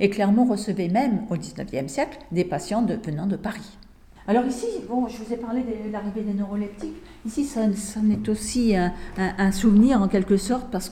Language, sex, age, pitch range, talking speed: French, female, 50-69, 180-225 Hz, 205 wpm